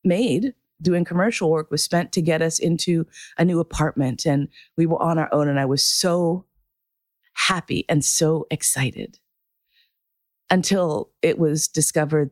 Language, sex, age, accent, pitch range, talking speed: English, female, 30-49, American, 145-190 Hz, 150 wpm